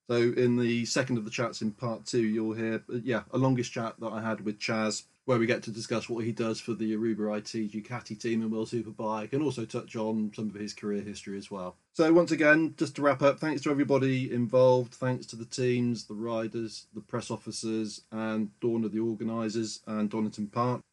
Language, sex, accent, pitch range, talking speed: English, male, British, 110-135 Hz, 220 wpm